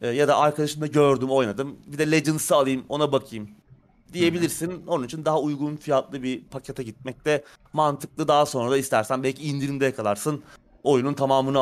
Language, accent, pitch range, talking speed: Turkish, native, 125-170 Hz, 160 wpm